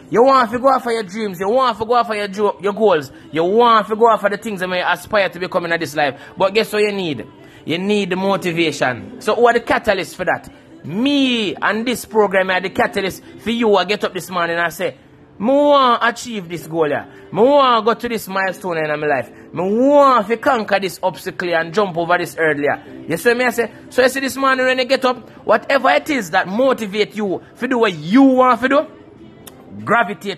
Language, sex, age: English, male, 20-39